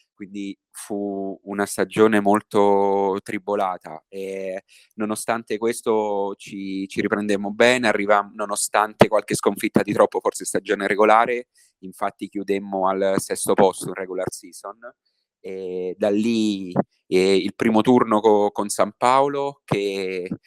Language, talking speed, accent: Italian, 120 wpm, native